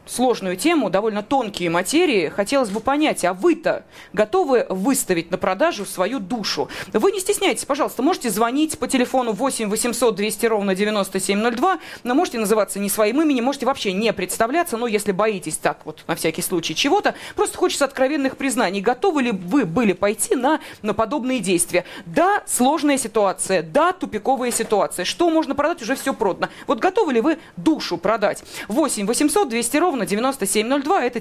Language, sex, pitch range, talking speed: Russian, female, 205-290 Hz, 165 wpm